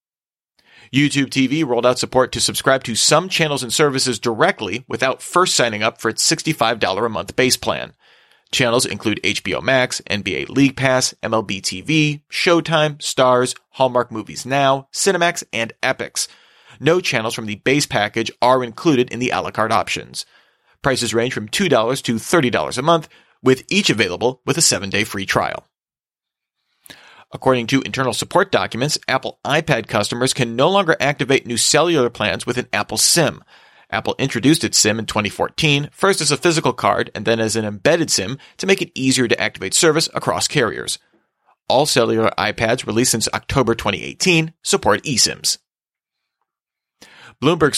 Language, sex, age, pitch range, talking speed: English, male, 30-49, 115-145 Hz, 160 wpm